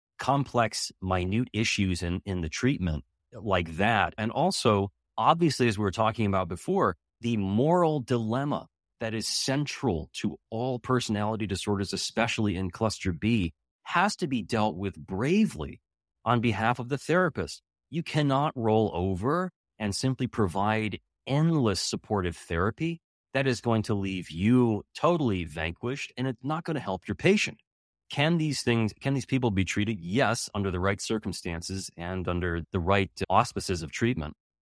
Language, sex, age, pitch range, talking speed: English, male, 30-49, 95-130 Hz, 155 wpm